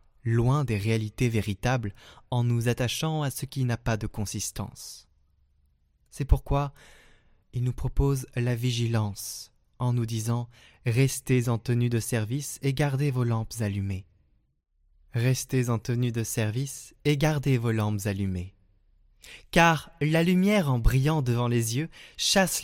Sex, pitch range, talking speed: male, 105-140 Hz, 150 wpm